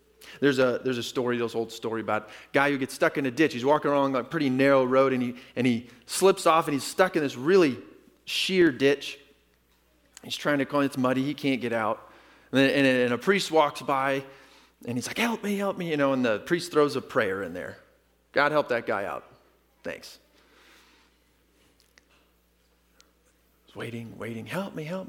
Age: 30-49